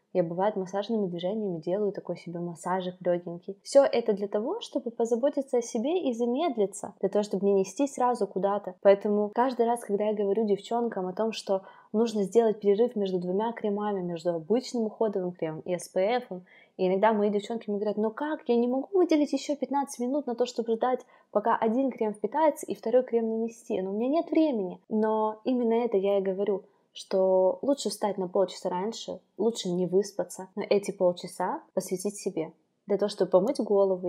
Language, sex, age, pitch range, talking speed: Russian, female, 20-39, 185-235 Hz, 185 wpm